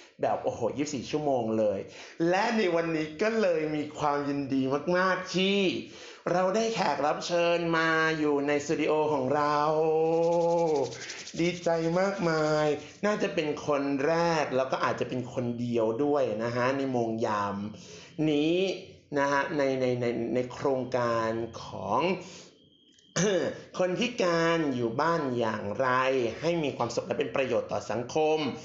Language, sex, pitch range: Thai, male, 130-170 Hz